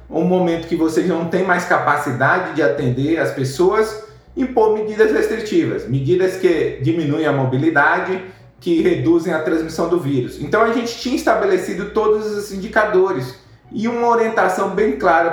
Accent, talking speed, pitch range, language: Brazilian, 155 wpm, 145-210 Hz, Portuguese